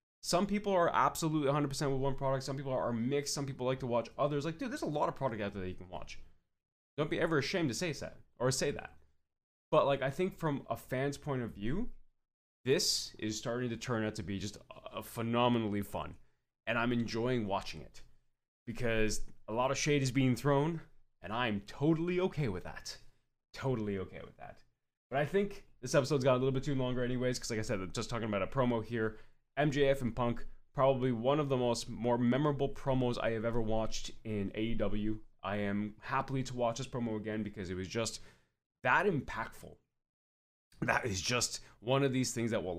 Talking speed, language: 210 wpm, English